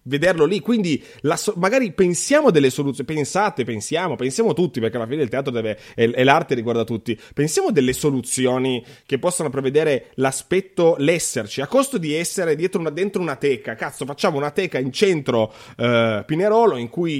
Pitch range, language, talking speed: 130-185 Hz, Italian, 165 wpm